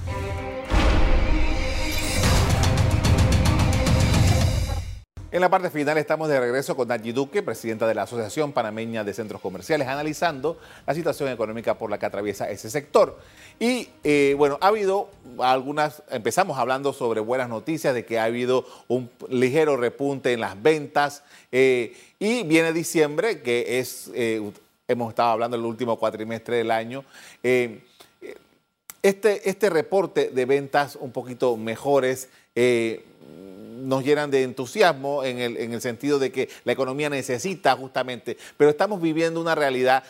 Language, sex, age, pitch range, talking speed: Spanish, male, 40-59, 115-150 Hz, 140 wpm